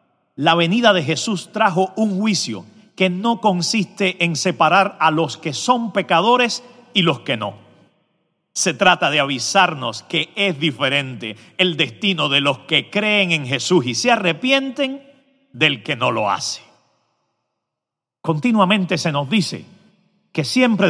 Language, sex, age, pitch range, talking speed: Spanish, male, 50-69, 140-205 Hz, 145 wpm